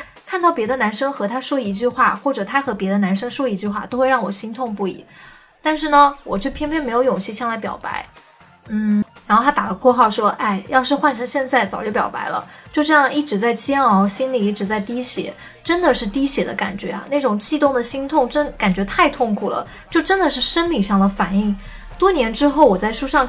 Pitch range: 205-280 Hz